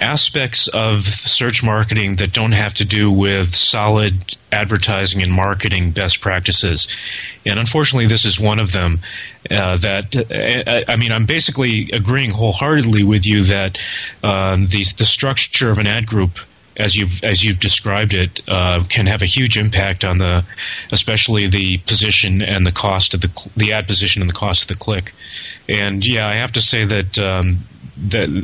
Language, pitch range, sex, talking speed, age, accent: English, 95-115 Hz, male, 175 wpm, 30-49, American